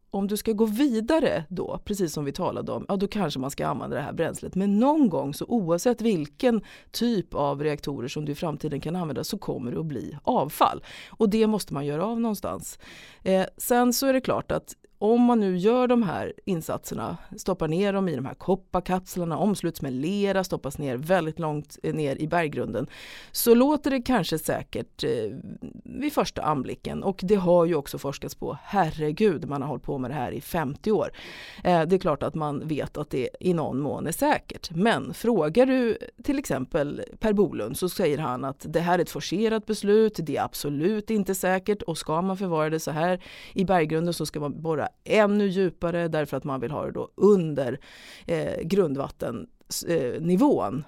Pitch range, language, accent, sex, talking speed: 155-215 Hz, Swedish, native, female, 195 wpm